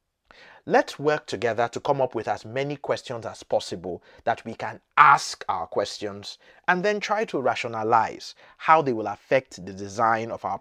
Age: 30-49